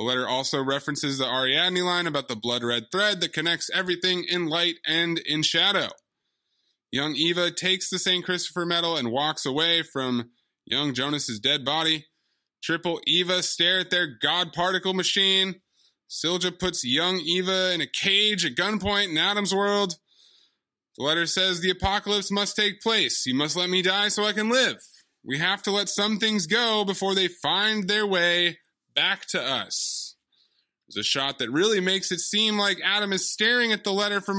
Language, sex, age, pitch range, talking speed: English, male, 20-39, 155-195 Hz, 180 wpm